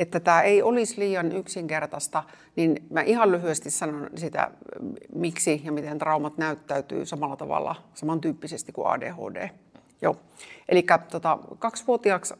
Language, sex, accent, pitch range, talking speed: Finnish, female, native, 155-175 Hz, 125 wpm